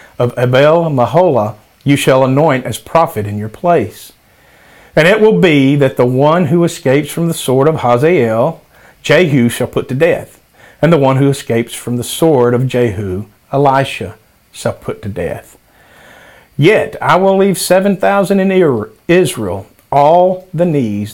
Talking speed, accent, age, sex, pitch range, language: 160 wpm, American, 50-69, male, 115-150 Hz, English